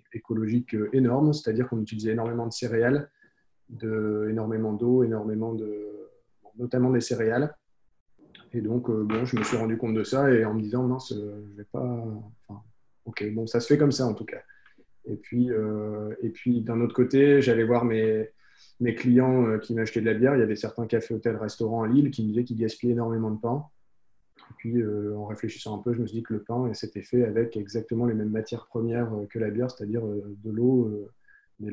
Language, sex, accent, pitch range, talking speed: French, male, French, 110-120 Hz, 210 wpm